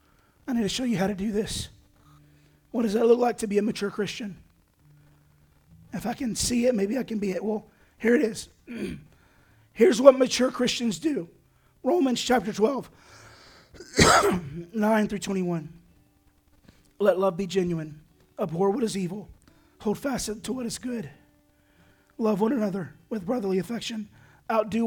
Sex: male